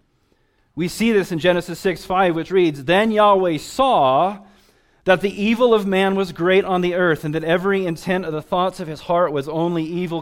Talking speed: 205 wpm